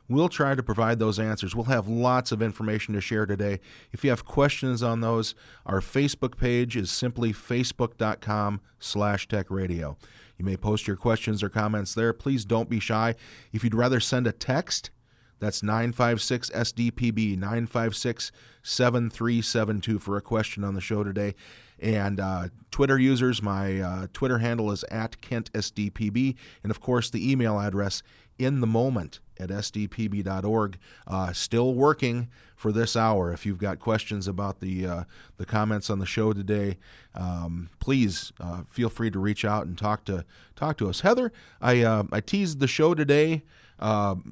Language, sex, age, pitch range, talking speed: English, male, 30-49, 100-120 Hz, 160 wpm